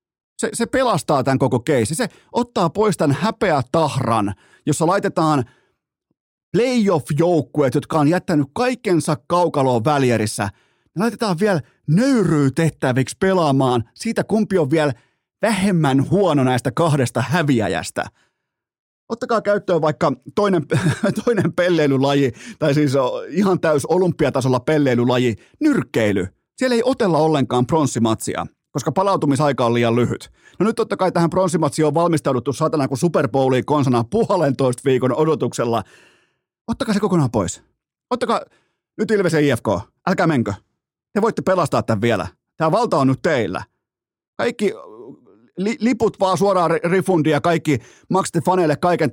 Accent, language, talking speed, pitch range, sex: native, Finnish, 130 wpm, 130-180 Hz, male